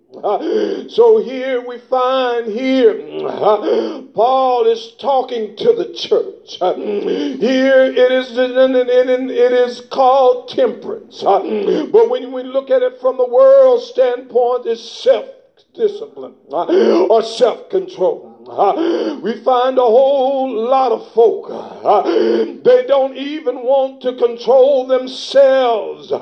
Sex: male